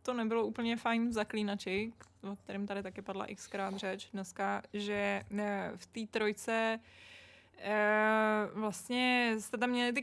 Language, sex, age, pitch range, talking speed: Czech, female, 20-39, 210-245 Hz, 145 wpm